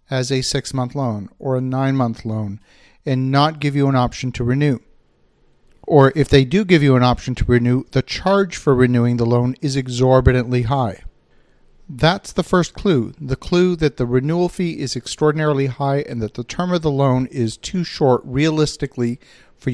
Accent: American